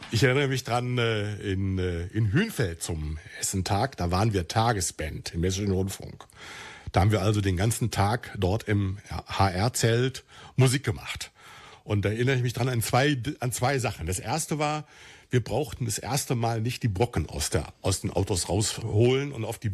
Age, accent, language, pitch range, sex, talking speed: 60-79, German, German, 105-135 Hz, male, 175 wpm